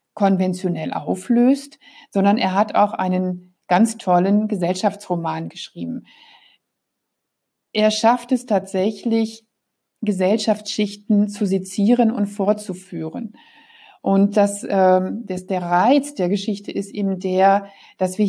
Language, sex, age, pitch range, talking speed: German, female, 50-69, 185-220 Hz, 105 wpm